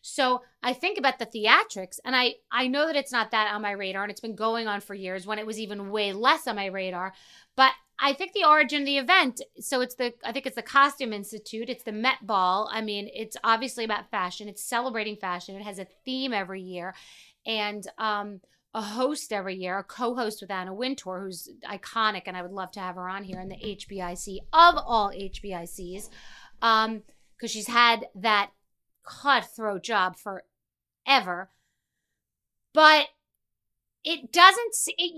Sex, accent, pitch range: female, American, 205-275 Hz